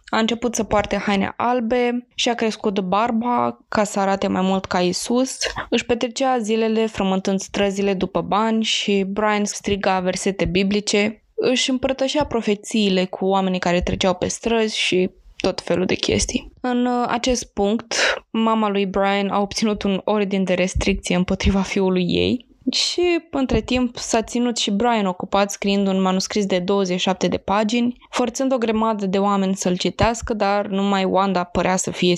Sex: female